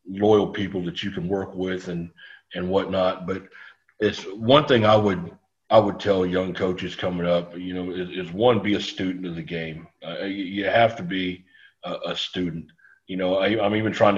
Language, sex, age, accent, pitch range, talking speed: English, male, 40-59, American, 90-110 Hz, 205 wpm